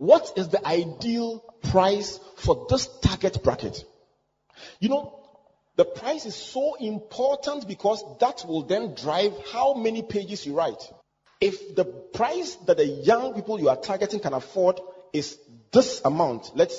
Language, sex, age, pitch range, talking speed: English, male, 40-59, 170-275 Hz, 150 wpm